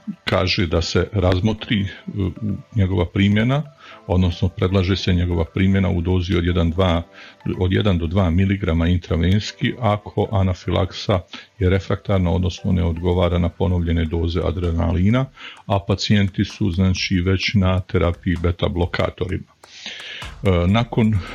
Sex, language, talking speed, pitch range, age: male, Croatian, 120 wpm, 90-115 Hz, 50-69